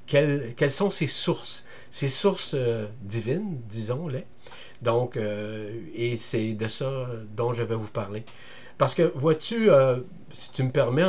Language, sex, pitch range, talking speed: French, male, 115-155 Hz, 150 wpm